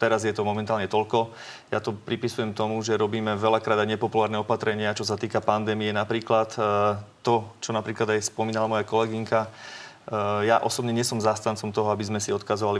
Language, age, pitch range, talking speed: Slovak, 30-49, 105-120 Hz, 170 wpm